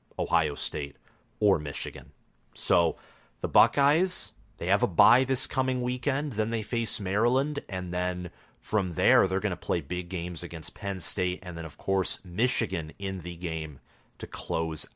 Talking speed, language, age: 165 wpm, English, 30-49